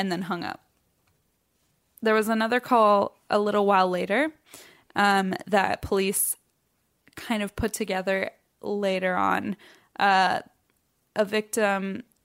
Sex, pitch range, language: female, 195-220 Hz, English